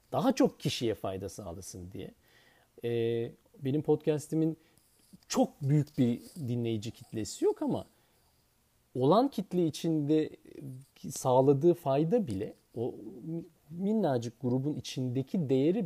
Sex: male